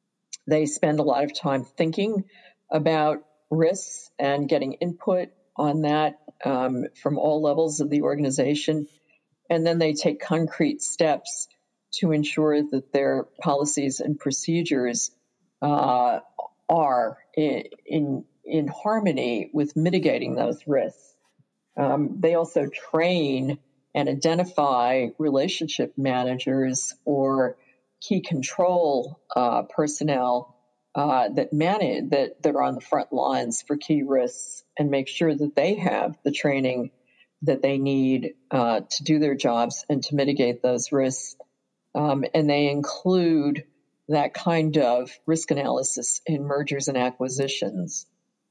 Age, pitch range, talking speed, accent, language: 50-69, 135-160 Hz, 125 wpm, American, English